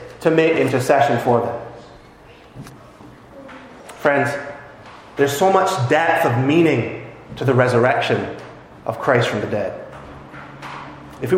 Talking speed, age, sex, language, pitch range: 115 wpm, 30-49, male, English, 135-190 Hz